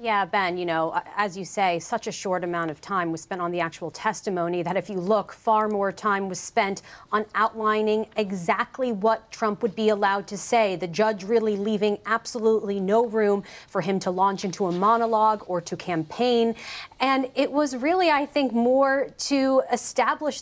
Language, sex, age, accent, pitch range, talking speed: English, female, 40-59, American, 195-235 Hz, 190 wpm